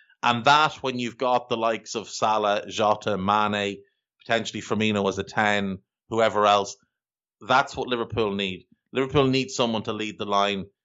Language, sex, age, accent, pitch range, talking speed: English, male, 30-49, Irish, 105-130 Hz, 160 wpm